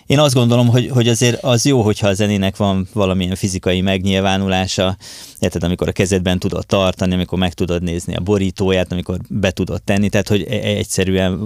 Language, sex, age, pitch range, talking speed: Hungarian, male, 20-39, 95-110 Hz, 180 wpm